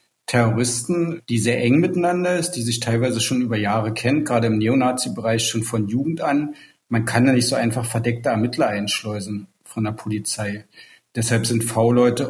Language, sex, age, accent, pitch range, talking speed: German, male, 50-69, German, 115-130 Hz, 170 wpm